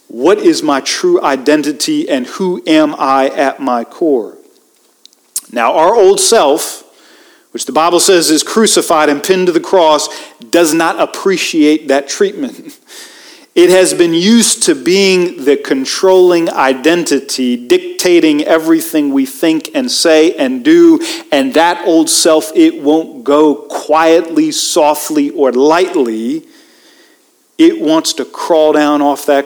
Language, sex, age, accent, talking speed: English, male, 40-59, American, 135 wpm